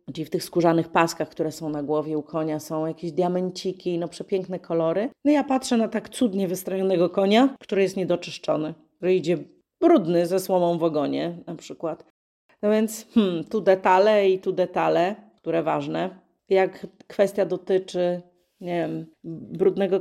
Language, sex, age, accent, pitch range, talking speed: Polish, female, 30-49, native, 165-205 Hz, 160 wpm